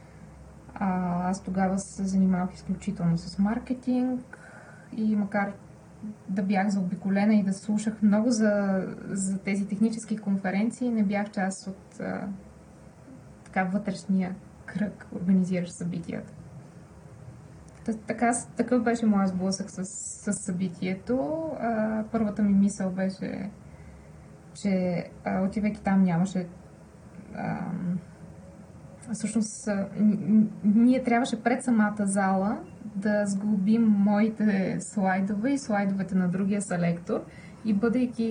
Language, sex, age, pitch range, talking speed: Bulgarian, female, 20-39, 190-220 Hz, 105 wpm